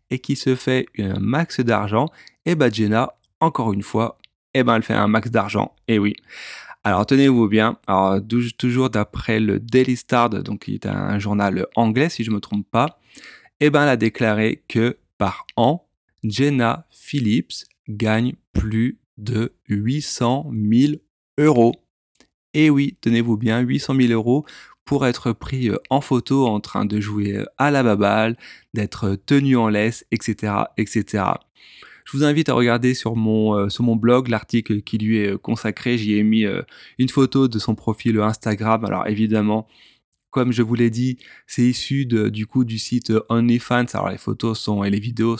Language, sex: French, male